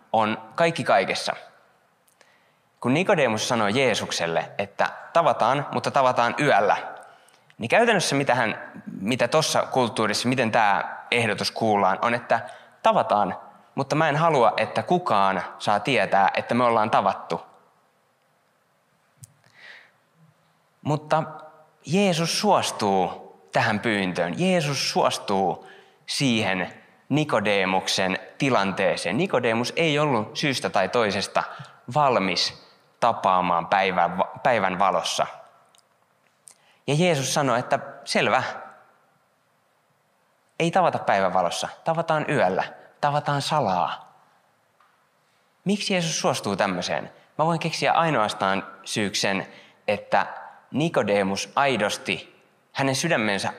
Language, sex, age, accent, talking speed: Finnish, male, 20-39, native, 95 wpm